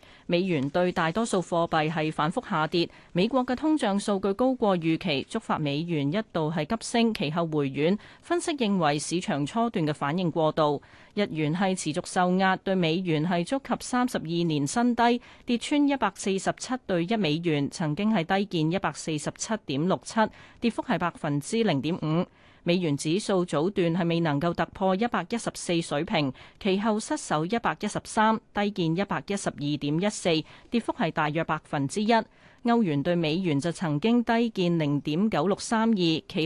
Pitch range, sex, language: 155-215 Hz, female, Chinese